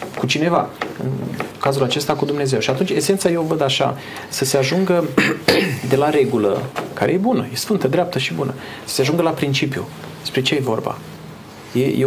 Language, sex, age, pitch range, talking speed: Romanian, male, 30-49, 125-160 Hz, 185 wpm